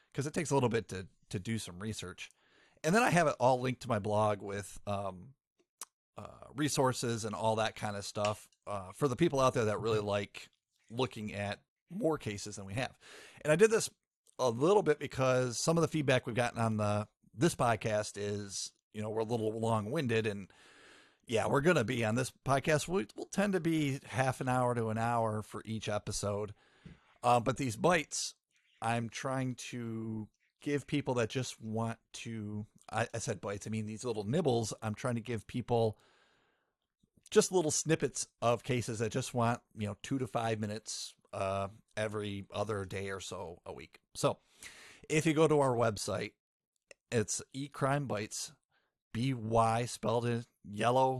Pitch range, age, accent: 105-130 Hz, 40-59, American